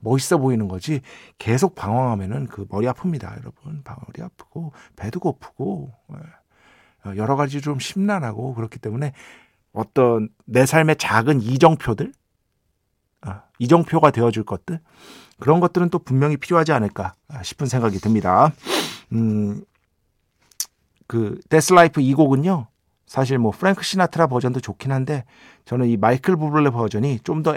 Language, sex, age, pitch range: Korean, male, 50-69, 110-155 Hz